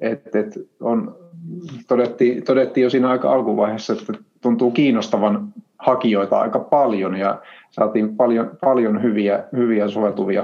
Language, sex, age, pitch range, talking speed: Finnish, male, 30-49, 105-130 Hz, 120 wpm